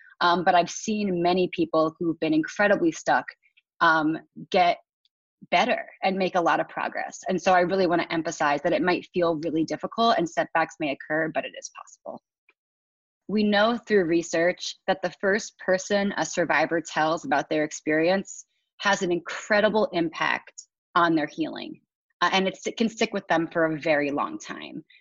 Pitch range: 170-210 Hz